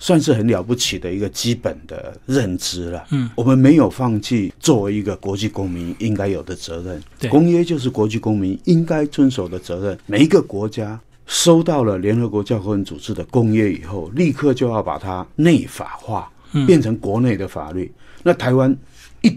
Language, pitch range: Chinese, 95-135 Hz